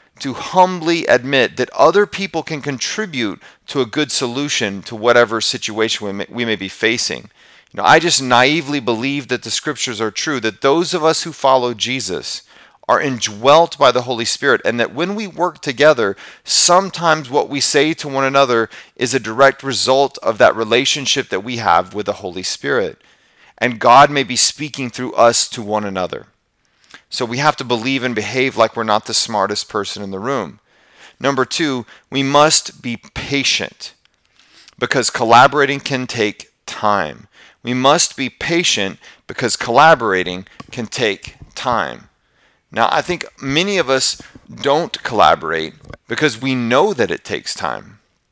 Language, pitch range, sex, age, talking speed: English, 115-145 Hz, male, 40-59, 165 wpm